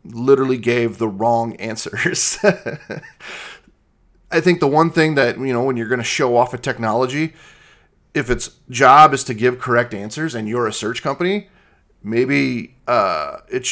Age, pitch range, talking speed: 30-49, 115-145 Hz, 160 wpm